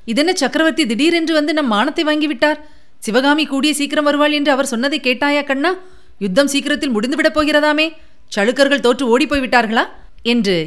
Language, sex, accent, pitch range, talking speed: Tamil, female, native, 230-280 Hz, 145 wpm